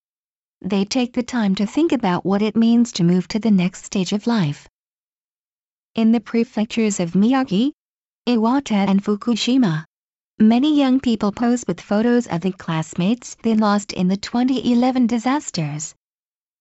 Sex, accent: female, American